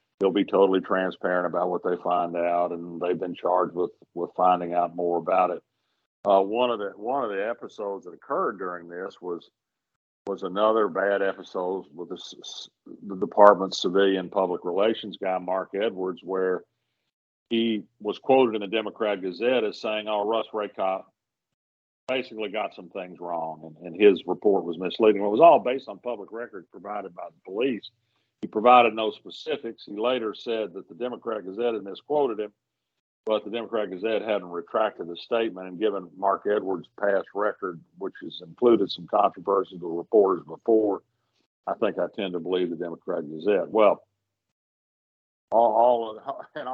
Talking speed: 170 wpm